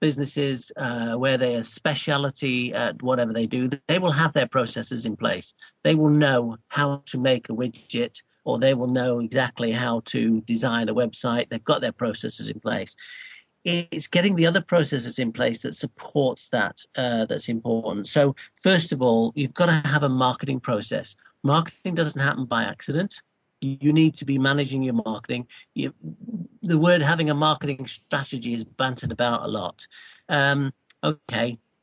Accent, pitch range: British, 120-150 Hz